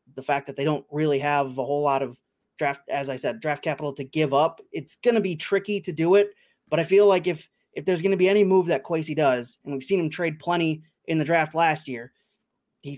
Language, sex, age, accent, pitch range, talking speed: English, male, 20-39, American, 145-175 Hz, 255 wpm